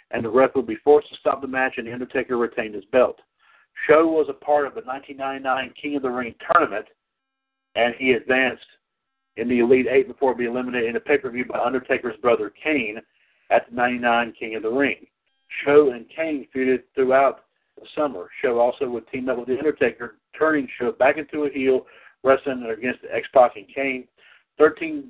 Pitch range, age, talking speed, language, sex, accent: 125-145 Hz, 50-69, 190 wpm, English, male, American